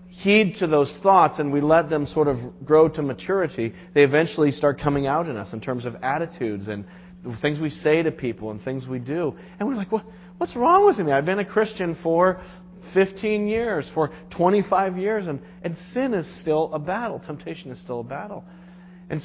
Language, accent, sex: English, American, male